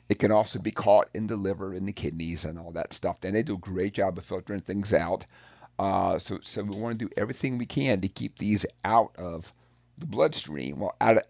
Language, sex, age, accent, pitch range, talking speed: English, male, 50-69, American, 95-115 Hz, 230 wpm